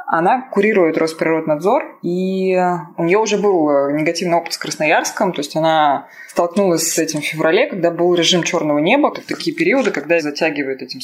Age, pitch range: 20-39, 150-195 Hz